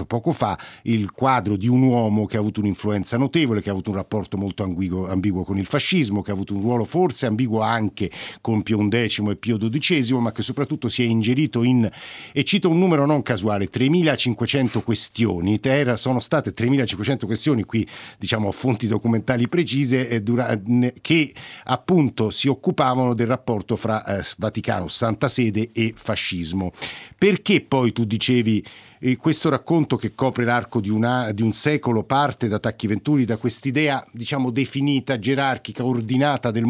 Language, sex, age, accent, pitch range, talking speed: Italian, male, 50-69, native, 105-135 Hz, 160 wpm